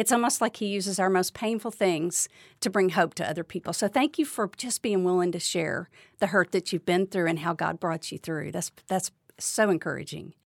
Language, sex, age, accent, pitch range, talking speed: English, female, 50-69, American, 195-275 Hz, 225 wpm